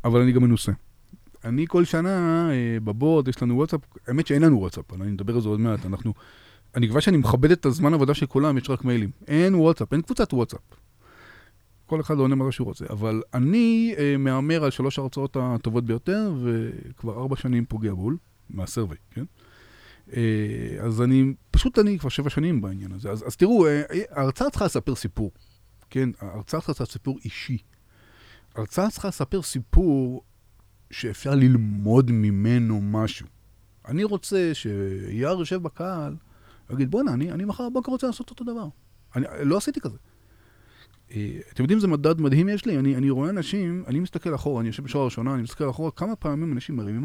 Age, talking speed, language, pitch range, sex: 30-49, 170 wpm, Hebrew, 110-150 Hz, male